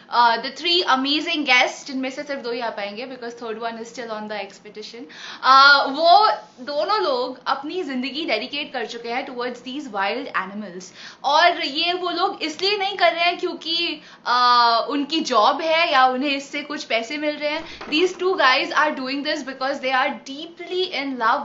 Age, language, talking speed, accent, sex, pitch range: 20-39, Hindi, 185 wpm, native, female, 240-315 Hz